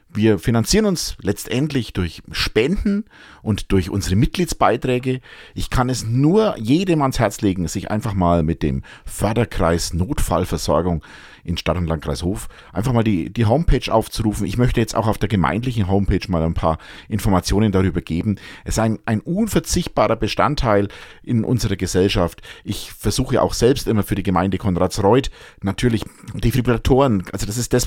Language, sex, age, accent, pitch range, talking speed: German, male, 50-69, German, 85-110 Hz, 160 wpm